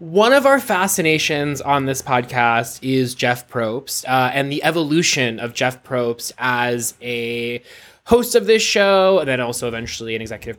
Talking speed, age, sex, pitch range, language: 165 wpm, 20-39, male, 130-160 Hz, English